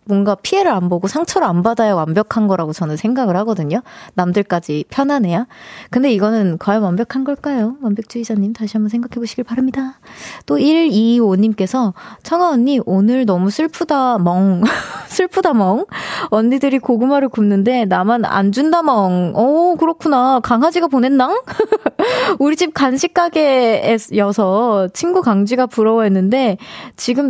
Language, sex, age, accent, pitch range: Korean, female, 20-39, native, 215-320 Hz